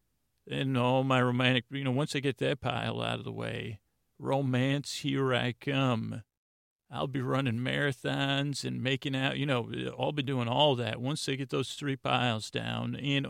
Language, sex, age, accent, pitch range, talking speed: English, male, 40-59, American, 120-135 Hz, 185 wpm